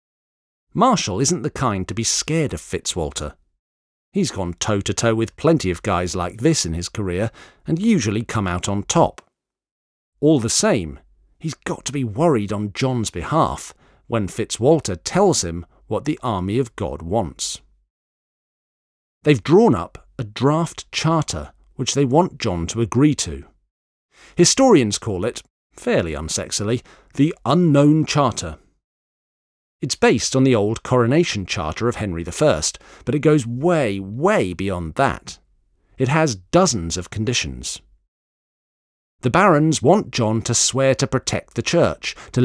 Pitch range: 90-140 Hz